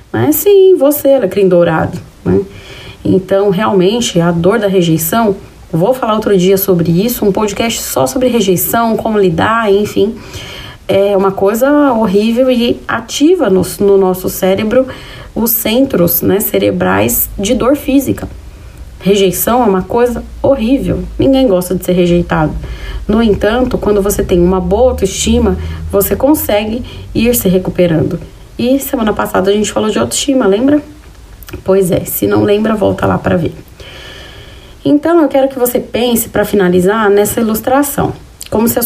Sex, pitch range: female, 185-255 Hz